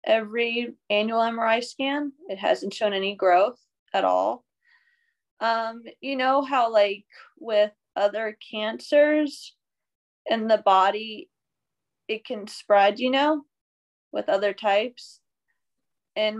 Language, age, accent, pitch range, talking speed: English, 20-39, American, 205-265 Hz, 115 wpm